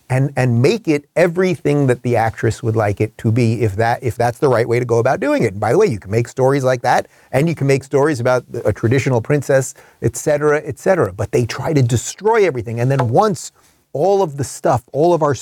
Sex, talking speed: male, 250 wpm